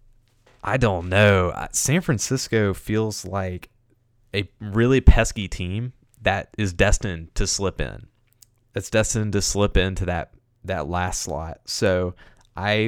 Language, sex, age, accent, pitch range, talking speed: English, male, 20-39, American, 90-115 Hz, 130 wpm